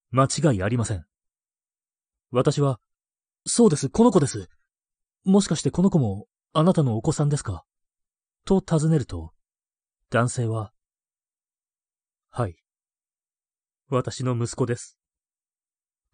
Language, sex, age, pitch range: Japanese, male, 30-49, 95-135 Hz